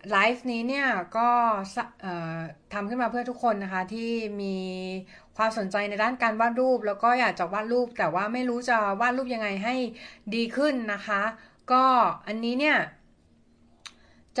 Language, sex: Thai, female